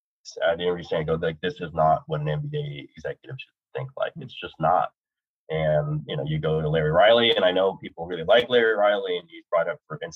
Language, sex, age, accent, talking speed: English, male, 30-49, American, 230 wpm